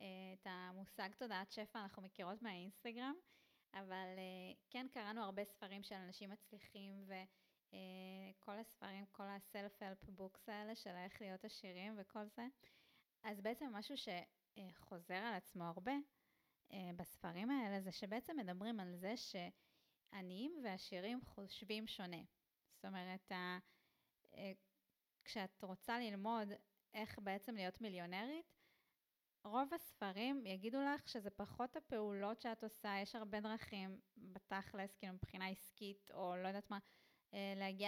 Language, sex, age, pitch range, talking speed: Hebrew, female, 20-39, 185-220 Hz, 120 wpm